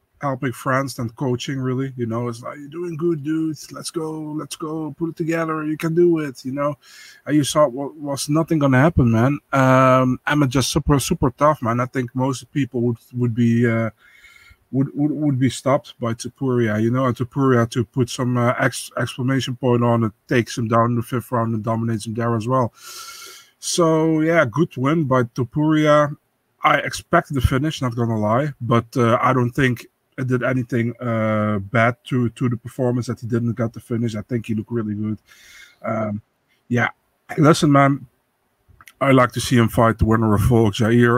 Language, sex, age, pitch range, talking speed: English, male, 20-39, 115-140 Hz, 205 wpm